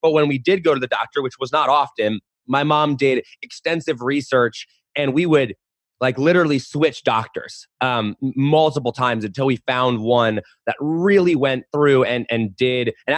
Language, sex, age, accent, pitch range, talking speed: English, male, 20-39, American, 120-145 Hz, 180 wpm